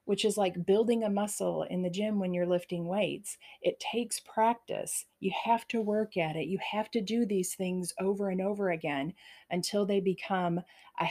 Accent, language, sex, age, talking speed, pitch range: American, English, female, 40-59, 195 wpm, 175-220 Hz